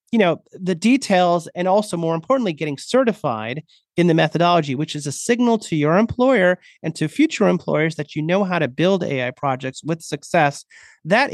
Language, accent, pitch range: English, American, 150-200 Hz